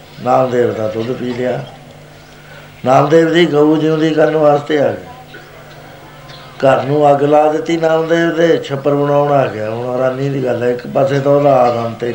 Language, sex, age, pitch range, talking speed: Punjabi, male, 60-79, 125-150 Hz, 175 wpm